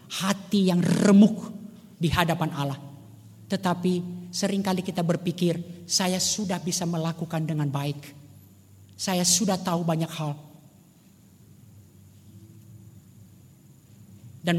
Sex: male